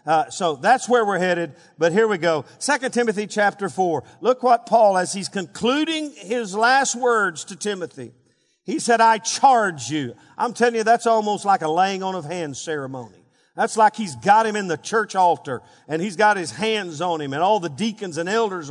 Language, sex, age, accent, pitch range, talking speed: English, male, 50-69, American, 170-235 Hz, 205 wpm